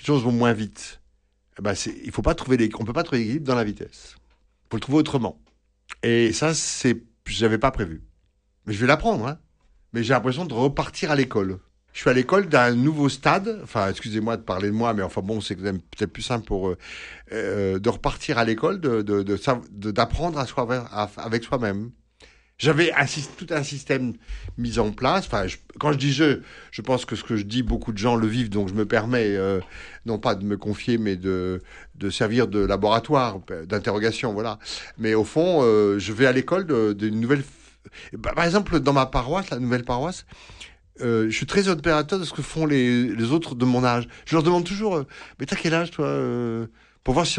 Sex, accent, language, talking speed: male, French, French, 230 wpm